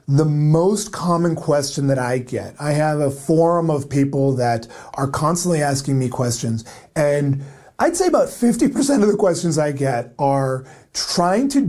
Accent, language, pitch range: American, English, 140-205 Hz